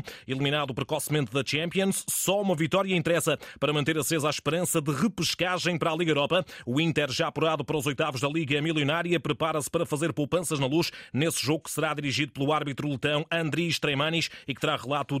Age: 30-49